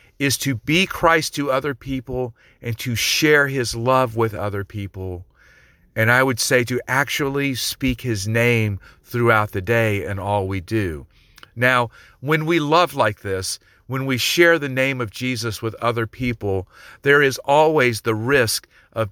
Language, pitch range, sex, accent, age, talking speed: English, 105-130 Hz, male, American, 50-69, 165 wpm